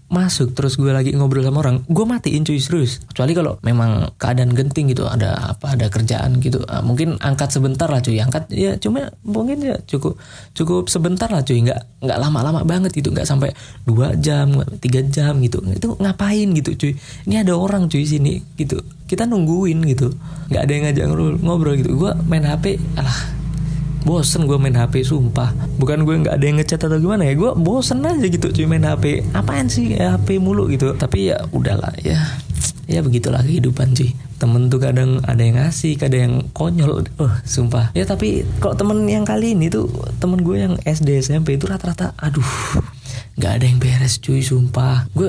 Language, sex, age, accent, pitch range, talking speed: Indonesian, male, 20-39, native, 125-155 Hz, 185 wpm